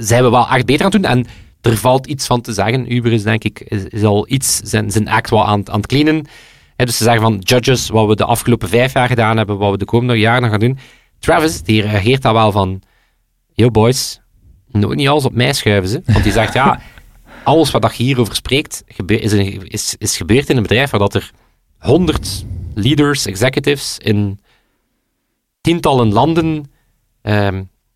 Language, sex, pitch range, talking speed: Dutch, male, 105-130 Hz, 200 wpm